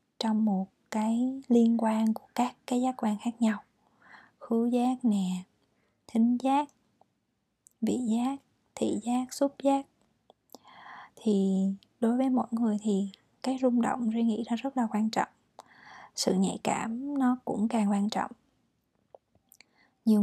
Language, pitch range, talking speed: Vietnamese, 205-250 Hz, 140 wpm